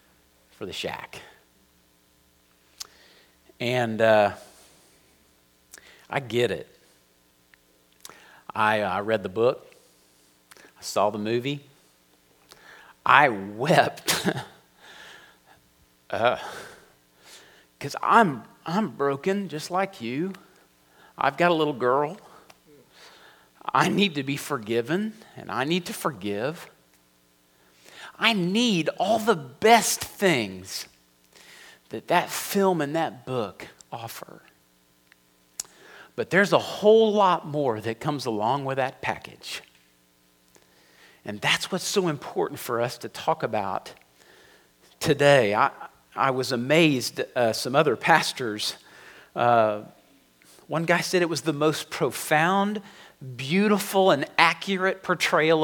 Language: English